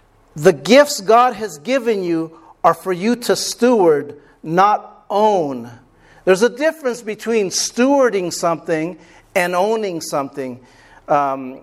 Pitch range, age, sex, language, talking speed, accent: 180-250 Hz, 50-69, male, English, 115 wpm, American